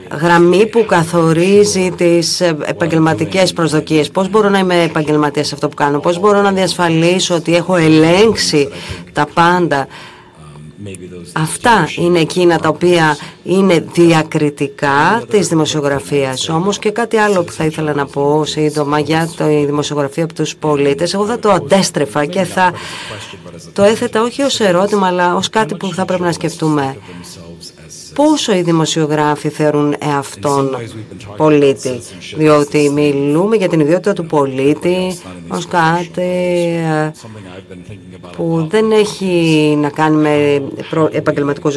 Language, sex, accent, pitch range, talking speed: Greek, female, native, 145-180 Hz, 130 wpm